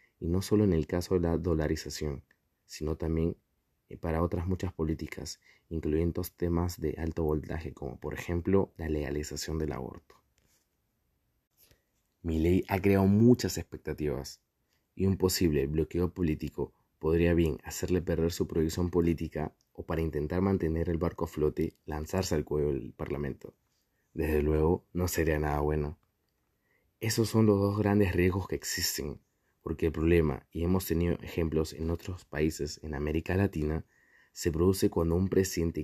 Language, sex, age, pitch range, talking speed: Spanish, male, 20-39, 80-95 Hz, 150 wpm